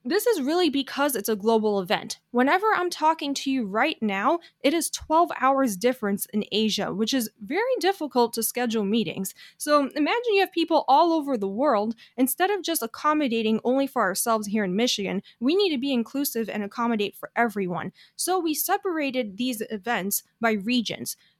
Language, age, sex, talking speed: English, 10-29, female, 180 wpm